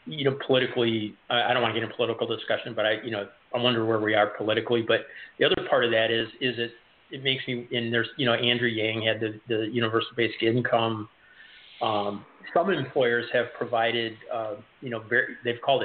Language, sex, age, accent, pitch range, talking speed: English, male, 40-59, American, 110-125 Hz, 210 wpm